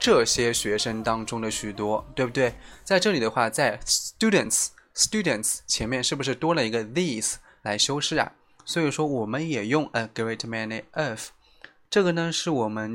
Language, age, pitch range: Chinese, 20-39, 110-145 Hz